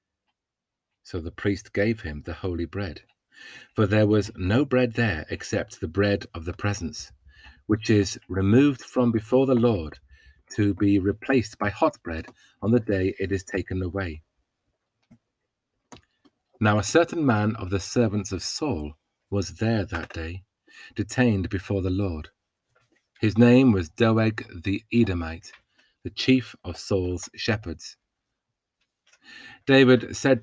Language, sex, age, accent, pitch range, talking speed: English, male, 40-59, British, 95-120 Hz, 140 wpm